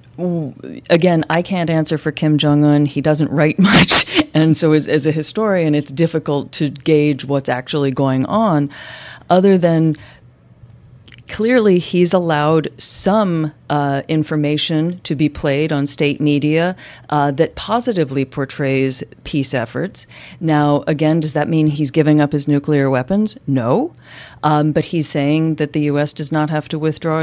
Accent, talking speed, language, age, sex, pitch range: American, 150 wpm, English, 40-59, female, 140-170 Hz